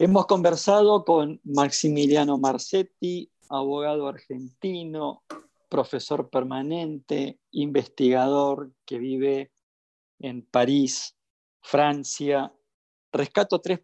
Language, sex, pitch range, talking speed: Spanish, male, 125-150 Hz, 75 wpm